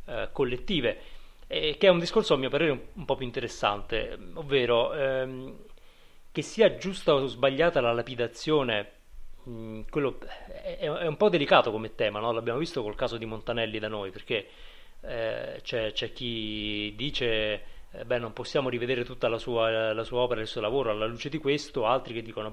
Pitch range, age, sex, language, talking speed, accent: 110-145 Hz, 30-49, male, Italian, 185 wpm, native